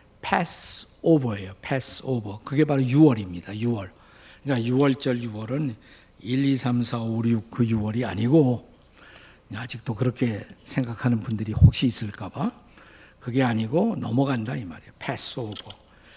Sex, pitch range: male, 115-160 Hz